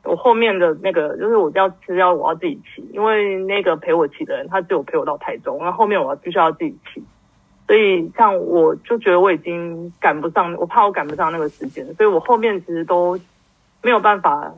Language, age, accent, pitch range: Chinese, 30-49, native, 175-270 Hz